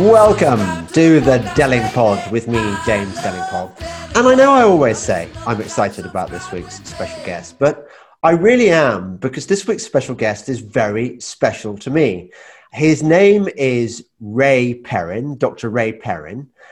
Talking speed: 160 wpm